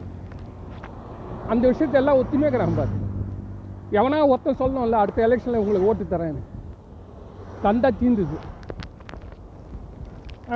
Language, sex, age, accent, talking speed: Tamil, male, 40-59, native, 90 wpm